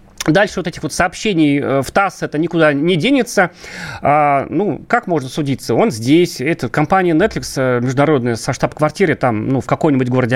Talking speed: 170 wpm